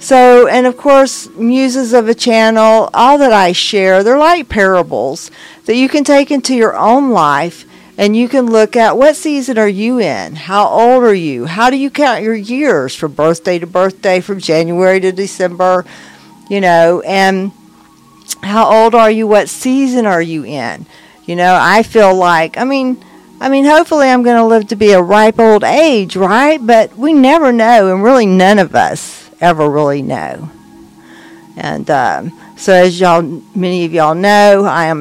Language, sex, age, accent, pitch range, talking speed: English, female, 50-69, American, 180-235 Hz, 185 wpm